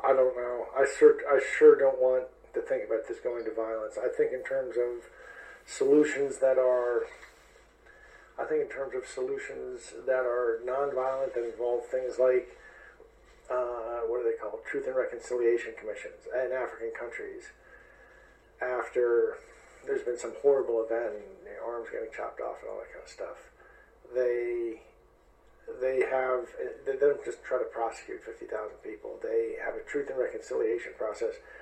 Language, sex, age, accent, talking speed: English, male, 50-69, American, 165 wpm